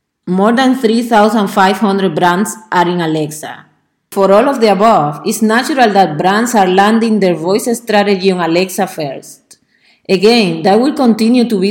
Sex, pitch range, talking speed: female, 175-220 Hz, 155 wpm